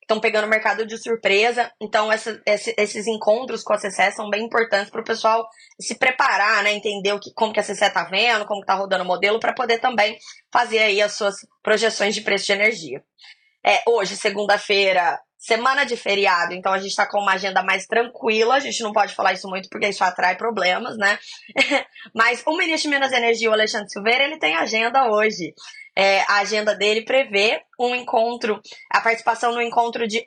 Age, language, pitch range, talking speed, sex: 20-39, Portuguese, 200-235 Hz, 205 wpm, female